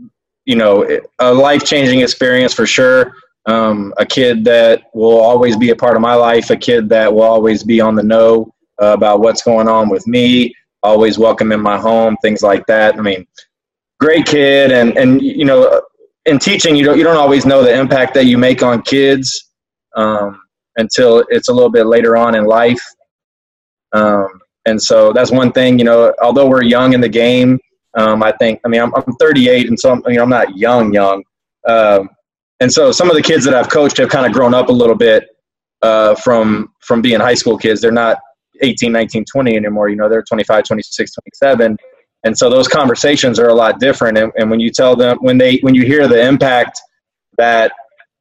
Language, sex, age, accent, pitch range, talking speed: English, male, 20-39, American, 110-135 Hz, 205 wpm